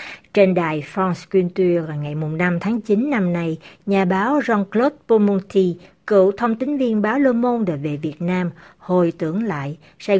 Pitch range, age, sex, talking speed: 165-225 Hz, 60-79, female, 170 wpm